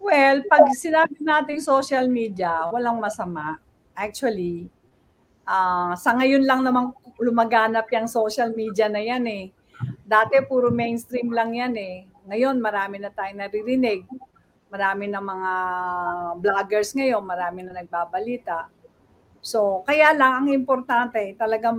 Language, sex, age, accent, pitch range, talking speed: English, female, 50-69, Filipino, 205-270 Hz, 125 wpm